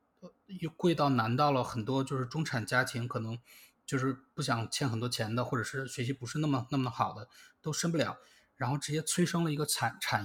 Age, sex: 20-39, male